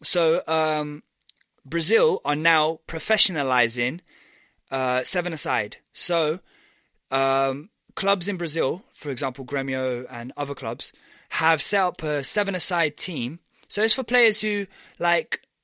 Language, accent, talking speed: English, British, 125 wpm